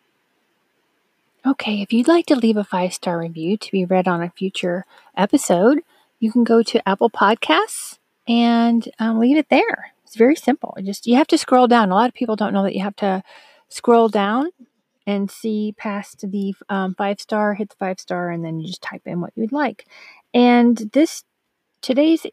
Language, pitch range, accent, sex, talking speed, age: English, 195-245 Hz, American, female, 190 wpm, 40-59